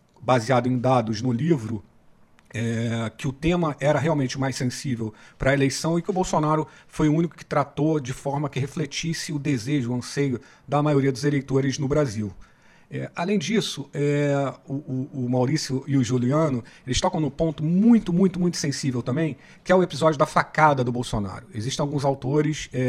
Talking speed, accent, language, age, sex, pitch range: 175 wpm, Brazilian, Portuguese, 50-69, male, 125-155 Hz